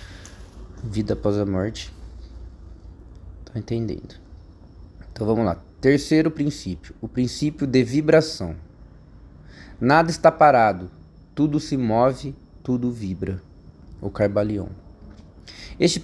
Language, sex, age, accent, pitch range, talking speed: Portuguese, male, 20-39, Brazilian, 95-140 Hz, 95 wpm